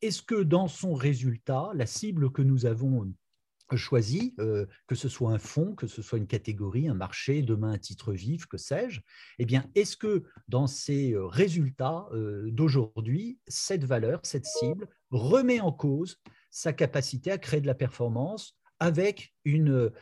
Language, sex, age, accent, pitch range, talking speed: French, male, 50-69, French, 120-160 Hz, 165 wpm